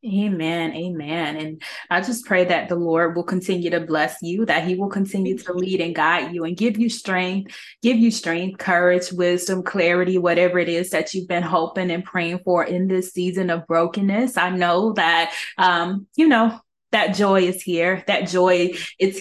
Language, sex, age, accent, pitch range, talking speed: English, female, 20-39, American, 175-195 Hz, 190 wpm